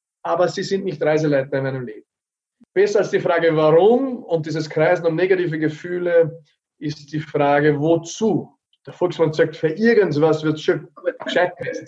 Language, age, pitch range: German, 30-49, 150-195 Hz